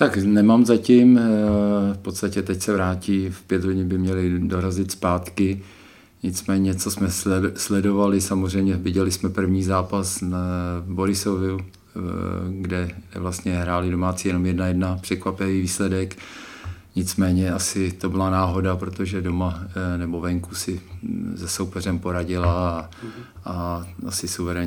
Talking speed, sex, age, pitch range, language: 125 wpm, male, 50-69, 90-100 Hz, Czech